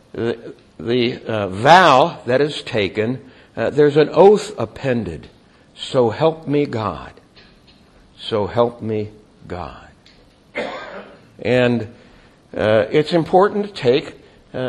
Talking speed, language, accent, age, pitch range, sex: 110 wpm, English, American, 60-79, 120-170 Hz, male